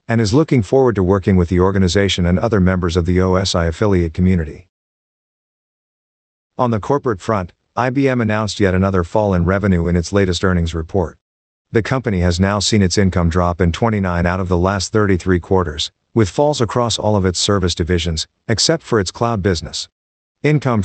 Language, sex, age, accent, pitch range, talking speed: English, male, 50-69, American, 90-110 Hz, 180 wpm